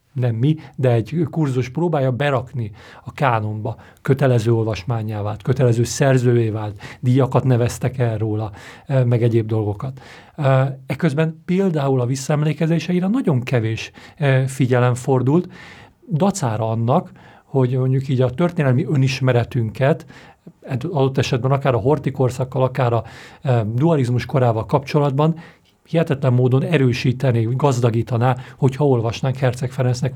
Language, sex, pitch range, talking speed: Hungarian, male, 120-145 Hz, 110 wpm